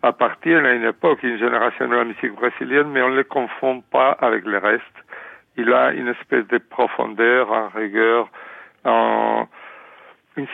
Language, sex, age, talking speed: French, male, 60-79, 170 wpm